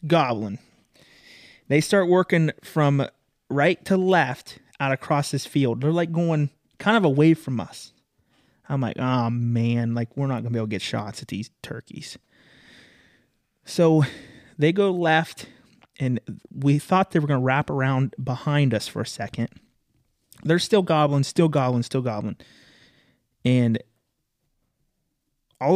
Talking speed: 150 wpm